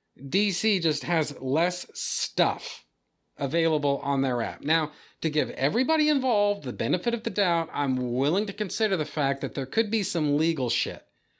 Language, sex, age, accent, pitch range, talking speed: English, male, 40-59, American, 130-170 Hz, 170 wpm